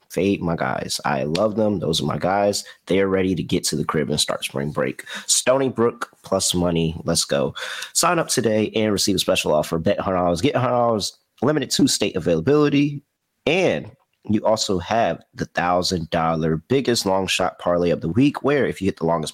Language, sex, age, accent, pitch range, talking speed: English, male, 30-49, American, 85-110 Hz, 190 wpm